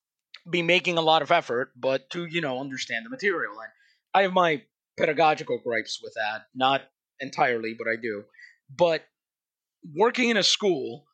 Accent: American